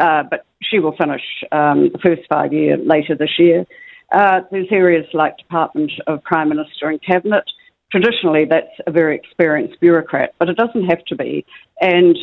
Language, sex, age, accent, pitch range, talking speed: English, female, 50-69, Australian, 155-180 Hz, 175 wpm